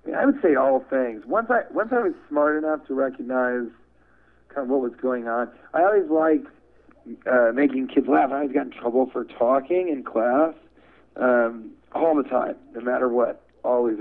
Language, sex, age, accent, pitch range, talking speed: English, male, 40-59, American, 115-145 Hz, 195 wpm